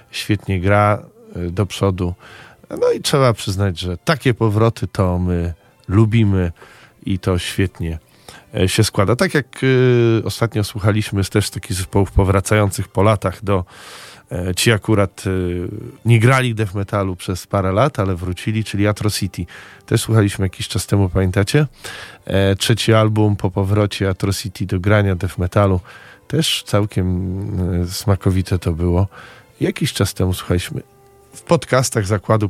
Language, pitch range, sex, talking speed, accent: Polish, 95-115 Hz, male, 145 wpm, native